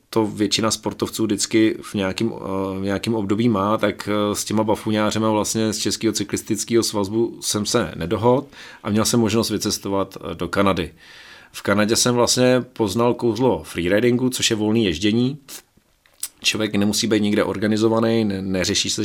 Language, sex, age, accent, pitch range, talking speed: Czech, male, 30-49, native, 100-115 Hz, 150 wpm